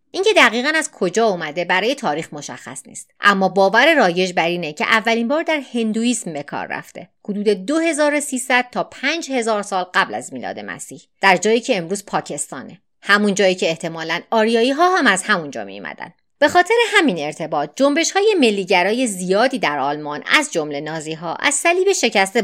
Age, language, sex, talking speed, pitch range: 30-49, Persian, female, 170 wpm, 165-270 Hz